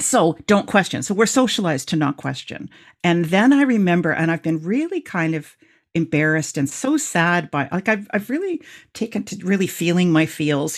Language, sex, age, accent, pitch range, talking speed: English, female, 50-69, American, 150-215 Hz, 190 wpm